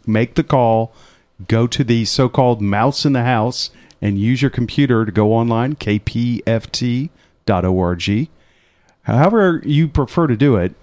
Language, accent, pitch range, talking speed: English, American, 105-140 Hz, 140 wpm